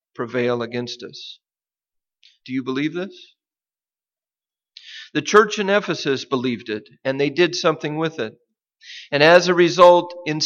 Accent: American